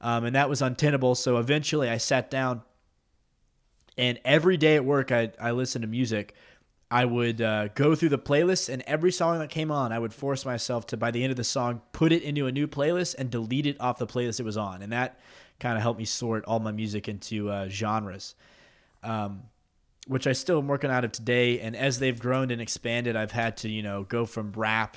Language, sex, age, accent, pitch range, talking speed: English, male, 20-39, American, 110-130 Hz, 225 wpm